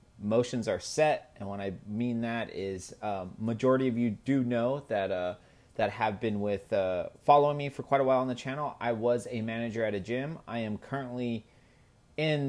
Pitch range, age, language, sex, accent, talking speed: 105-130 Hz, 30-49, English, male, American, 205 wpm